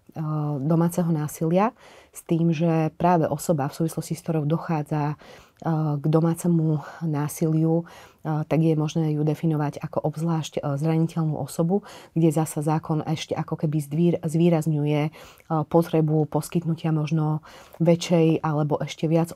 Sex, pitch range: female, 155-170 Hz